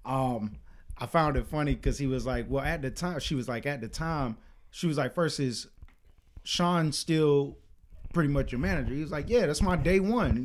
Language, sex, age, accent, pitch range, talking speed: English, male, 30-49, American, 125-165 Hz, 220 wpm